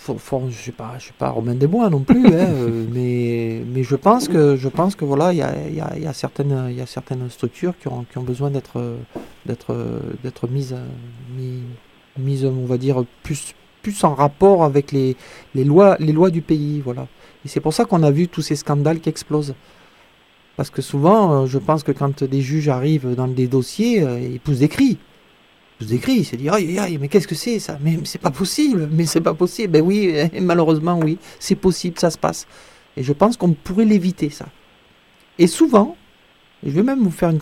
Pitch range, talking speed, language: 135-175 Hz, 200 wpm, French